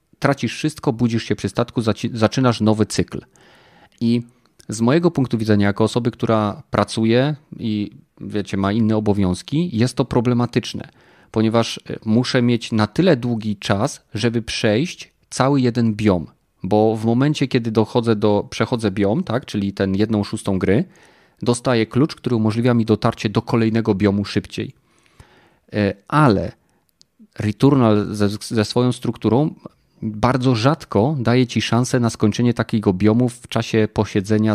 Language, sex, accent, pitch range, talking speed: Polish, male, native, 100-120 Hz, 140 wpm